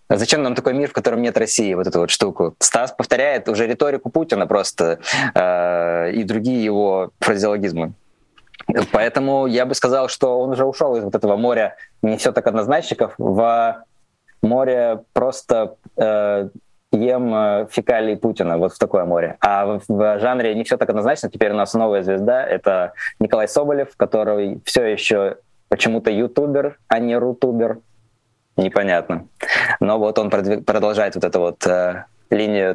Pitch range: 105-145 Hz